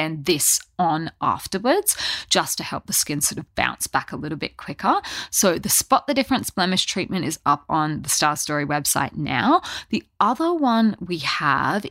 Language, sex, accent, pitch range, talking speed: English, female, Australian, 155-200 Hz, 180 wpm